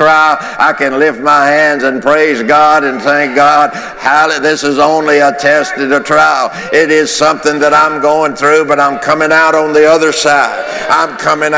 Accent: American